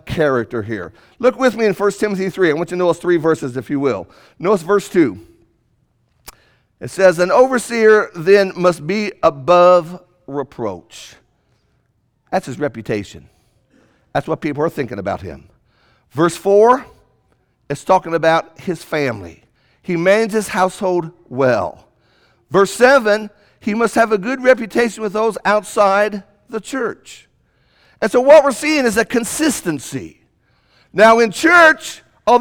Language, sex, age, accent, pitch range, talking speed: English, male, 50-69, American, 180-255 Hz, 145 wpm